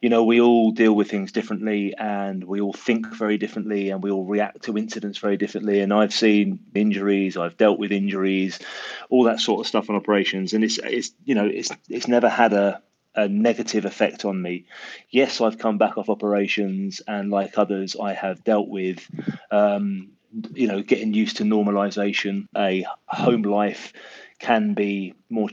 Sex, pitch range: male, 100-110 Hz